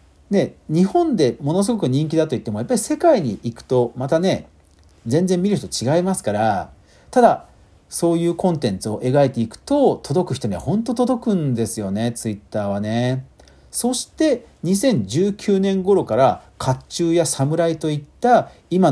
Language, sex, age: Japanese, male, 40-59